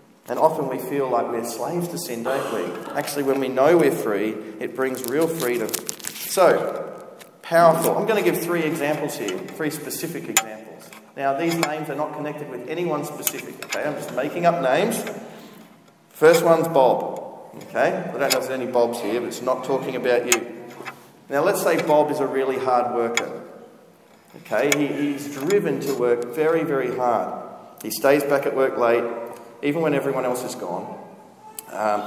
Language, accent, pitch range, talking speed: English, Australian, 125-175 Hz, 180 wpm